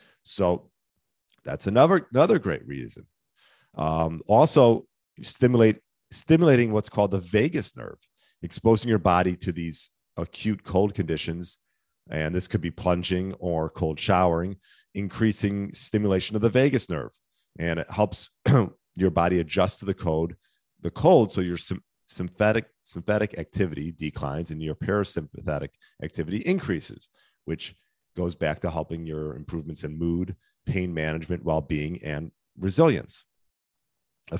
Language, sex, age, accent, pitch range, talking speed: English, male, 40-59, American, 85-105 Hz, 130 wpm